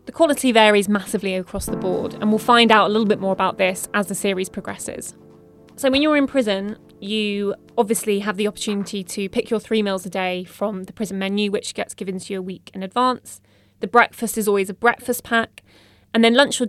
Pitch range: 195-225 Hz